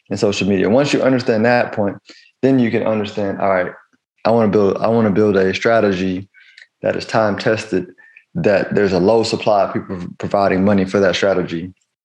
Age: 20-39